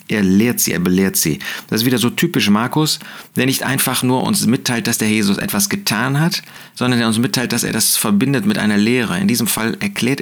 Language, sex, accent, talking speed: German, male, German, 230 wpm